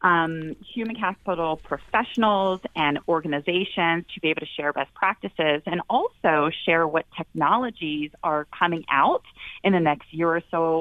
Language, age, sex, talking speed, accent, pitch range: English, 30-49, female, 150 wpm, American, 155-195 Hz